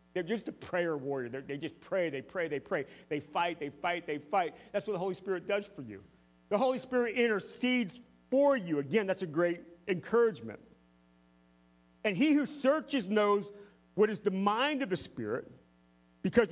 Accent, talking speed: American, 180 wpm